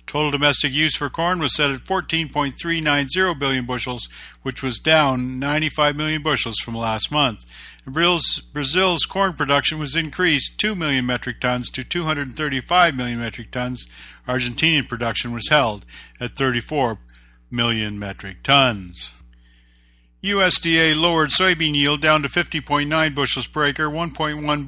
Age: 50-69